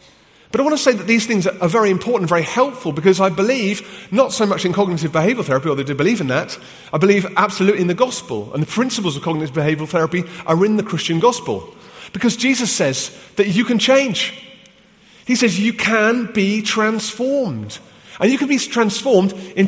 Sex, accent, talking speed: male, British, 200 wpm